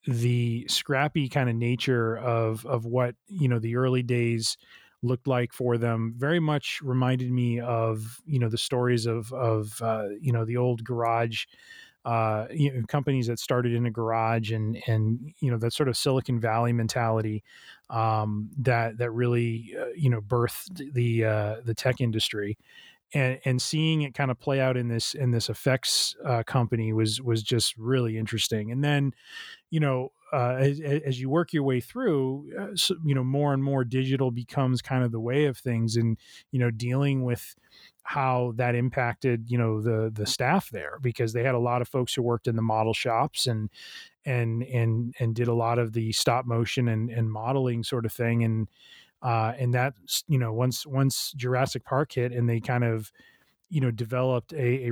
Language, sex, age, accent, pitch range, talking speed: English, male, 20-39, American, 115-130 Hz, 195 wpm